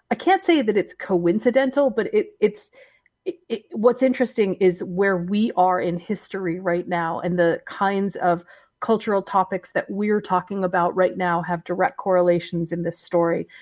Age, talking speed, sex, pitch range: 30-49, 170 wpm, female, 175-225 Hz